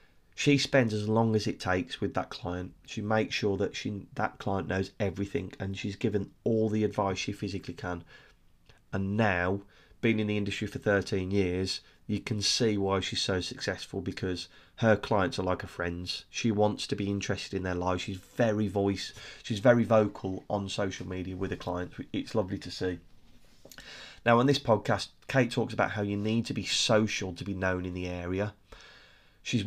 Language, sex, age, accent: English, male, 30-49, British